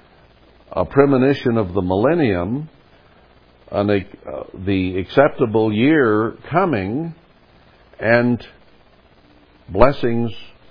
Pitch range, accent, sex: 85-120 Hz, American, male